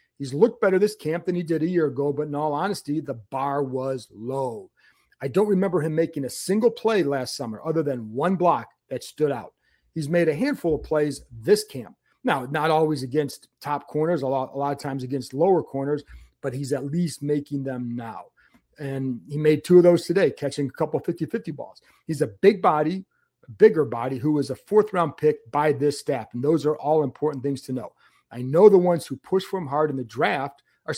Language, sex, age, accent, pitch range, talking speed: English, male, 40-59, American, 140-175 Hz, 225 wpm